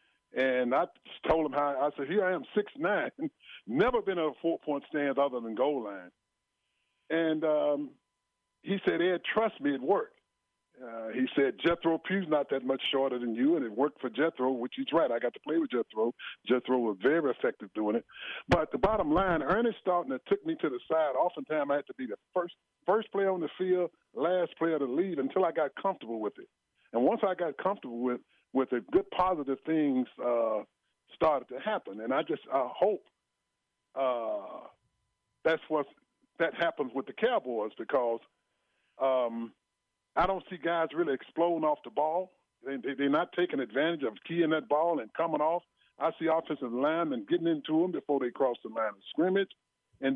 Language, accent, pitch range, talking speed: English, American, 125-175 Hz, 195 wpm